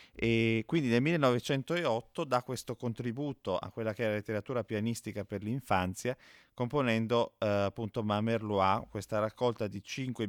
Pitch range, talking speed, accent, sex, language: 100-120 Hz, 140 wpm, native, male, Italian